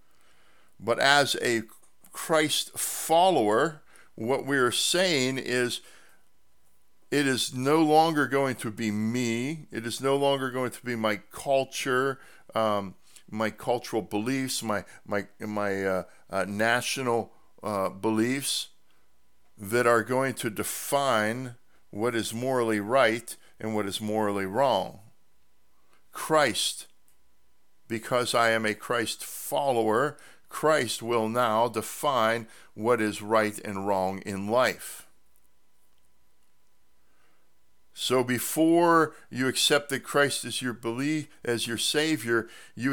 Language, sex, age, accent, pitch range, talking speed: English, male, 60-79, American, 110-140 Hz, 115 wpm